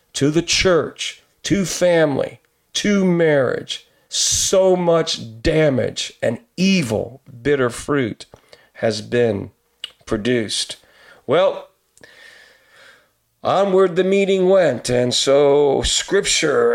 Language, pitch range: English, 120-160 Hz